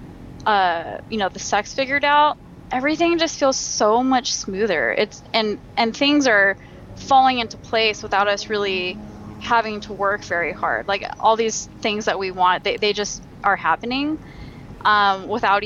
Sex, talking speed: female, 165 wpm